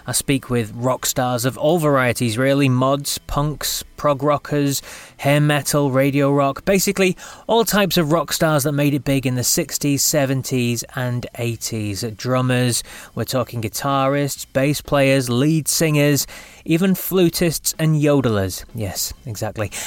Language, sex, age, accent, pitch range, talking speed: English, male, 20-39, British, 125-175 Hz, 140 wpm